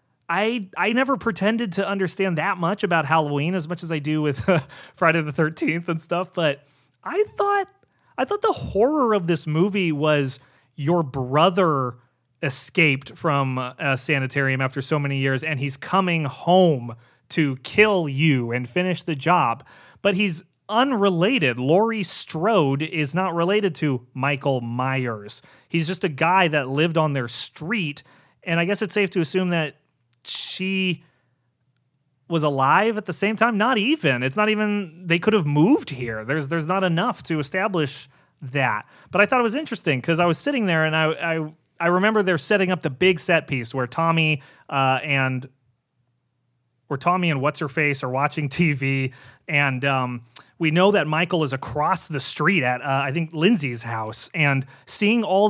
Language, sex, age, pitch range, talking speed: English, male, 30-49, 135-185 Hz, 175 wpm